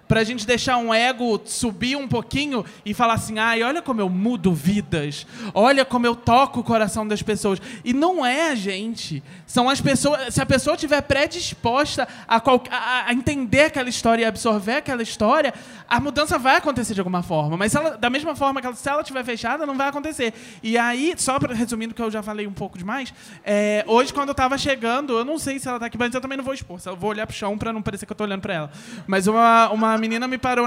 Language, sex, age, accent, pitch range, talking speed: Portuguese, male, 20-39, Brazilian, 210-265 Hz, 240 wpm